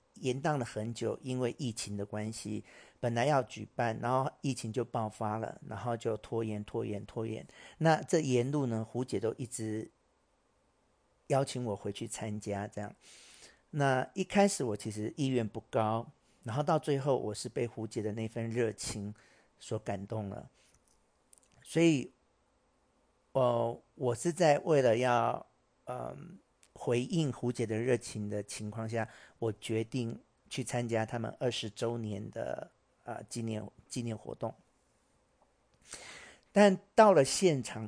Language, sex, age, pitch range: Chinese, male, 50-69, 110-130 Hz